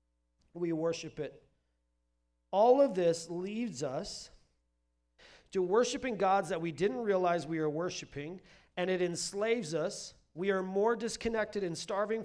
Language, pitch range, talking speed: English, 150-200 Hz, 135 wpm